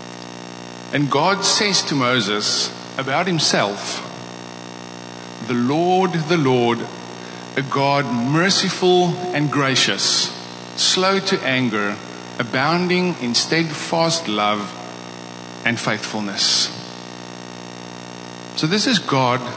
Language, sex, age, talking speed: English, male, 50-69, 90 wpm